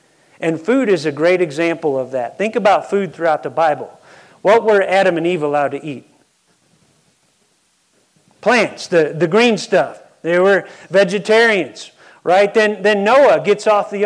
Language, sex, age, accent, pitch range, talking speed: English, male, 40-59, American, 150-205 Hz, 160 wpm